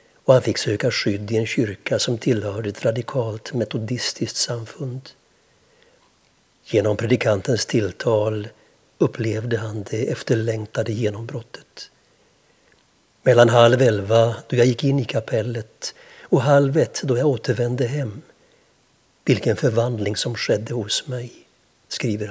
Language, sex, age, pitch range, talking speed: Swedish, male, 60-79, 110-130 Hz, 120 wpm